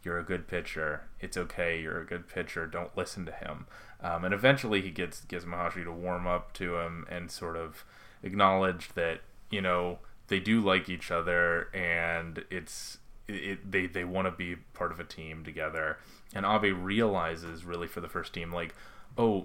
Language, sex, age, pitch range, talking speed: English, male, 20-39, 90-105 Hz, 190 wpm